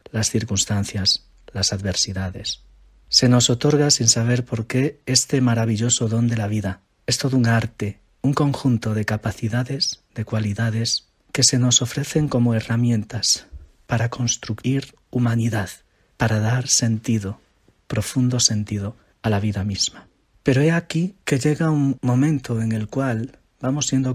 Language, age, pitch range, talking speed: Spanish, 40-59, 110-125 Hz, 140 wpm